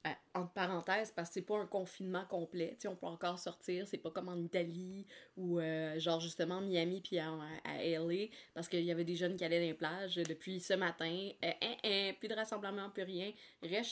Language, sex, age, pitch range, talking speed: French, female, 20-39, 175-220 Hz, 230 wpm